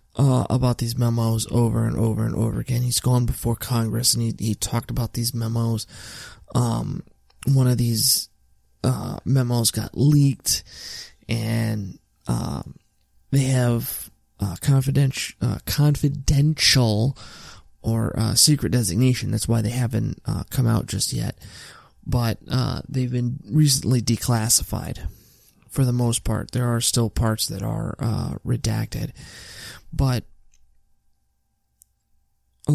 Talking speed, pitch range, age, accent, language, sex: 130 wpm, 110-130 Hz, 20-39, American, English, male